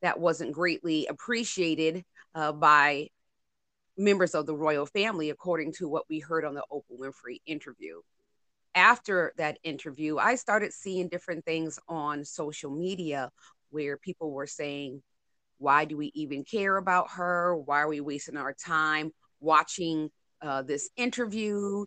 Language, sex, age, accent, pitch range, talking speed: English, female, 30-49, American, 155-200 Hz, 145 wpm